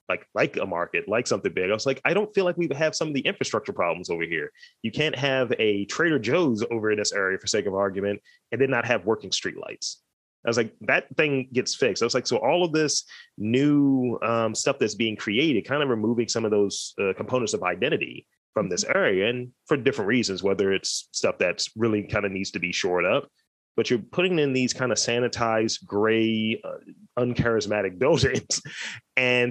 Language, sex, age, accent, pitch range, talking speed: English, male, 30-49, American, 110-165 Hz, 215 wpm